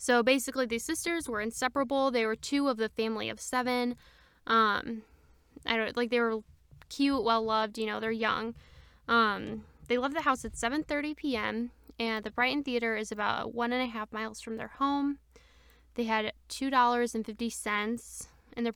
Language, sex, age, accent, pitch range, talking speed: English, female, 10-29, American, 225-245 Hz, 165 wpm